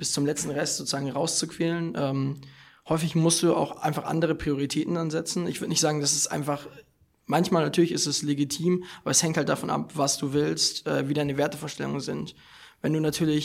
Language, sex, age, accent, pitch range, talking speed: German, male, 20-39, German, 135-150 Hz, 195 wpm